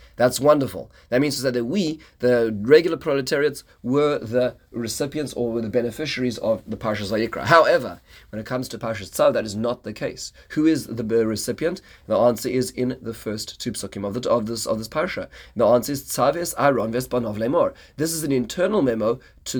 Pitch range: 110-140 Hz